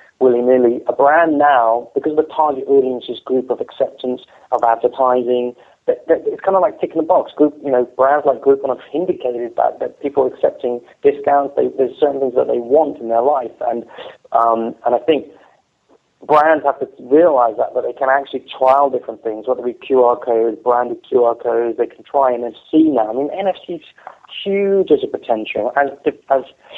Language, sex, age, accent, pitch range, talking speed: English, male, 30-49, British, 120-145 Hz, 195 wpm